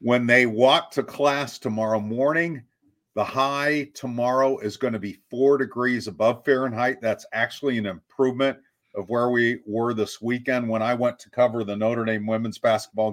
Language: English